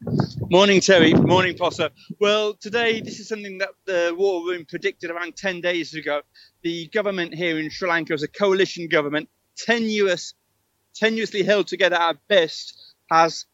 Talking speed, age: 155 wpm, 30-49